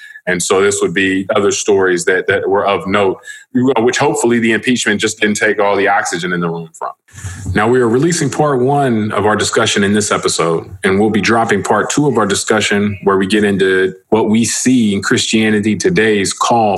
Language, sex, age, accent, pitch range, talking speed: English, male, 30-49, American, 100-140 Hz, 205 wpm